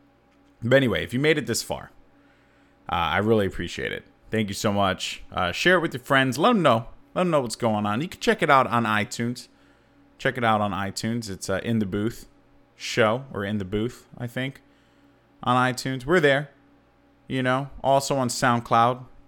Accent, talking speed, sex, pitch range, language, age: American, 200 wpm, male, 105-145 Hz, English, 30-49